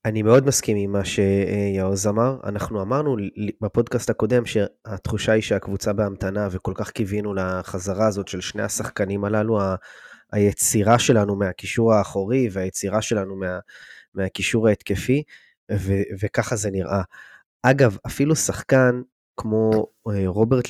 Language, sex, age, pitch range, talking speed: Hebrew, male, 20-39, 100-120 Hz, 120 wpm